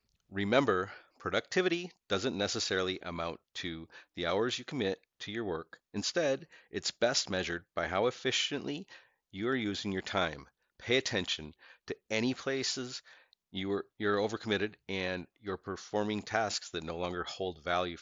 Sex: male